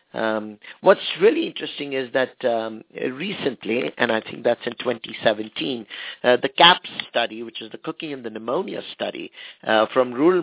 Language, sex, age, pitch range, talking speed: English, male, 50-69, 110-145 Hz, 165 wpm